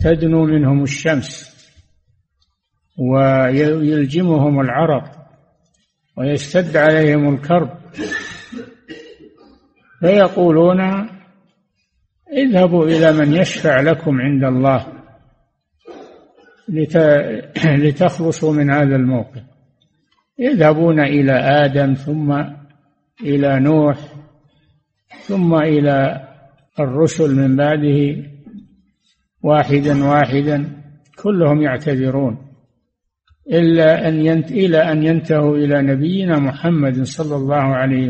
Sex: male